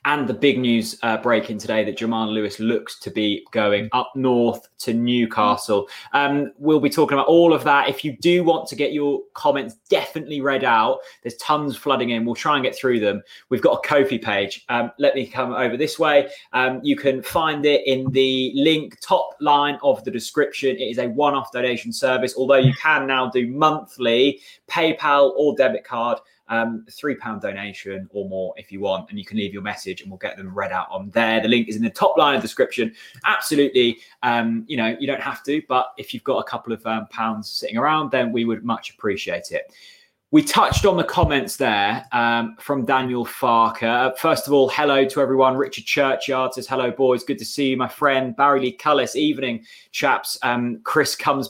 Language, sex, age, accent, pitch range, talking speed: English, male, 20-39, British, 115-145 Hz, 215 wpm